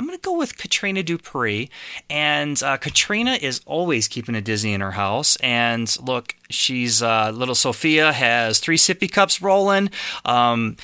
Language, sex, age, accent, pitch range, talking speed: English, male, 30-49, American, 115-155 Hz, 165 wpm